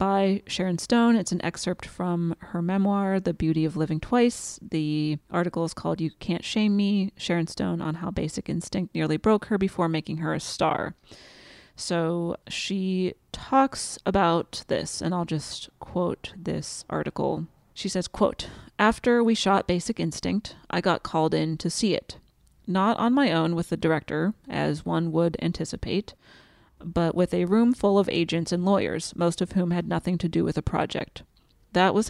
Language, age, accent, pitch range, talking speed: English, 30-49, American, 165-195 Hz, 175 wpm